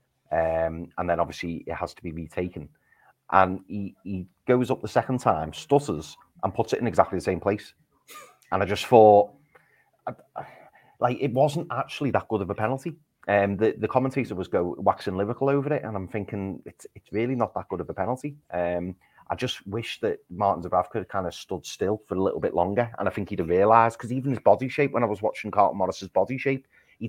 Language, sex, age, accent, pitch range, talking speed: English, male, 30-49, British, 90-125 Hz, 220 wpm